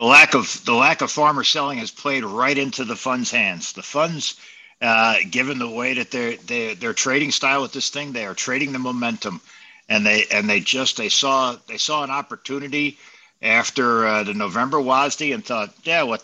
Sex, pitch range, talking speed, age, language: male, 115-145 Hz, 200 wpm, 60-79, English